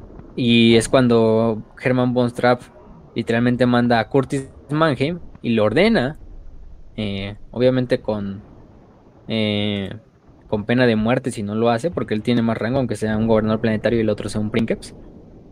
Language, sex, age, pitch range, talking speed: Spanish, male, 20-39, 105-125 Hz, 160 wpm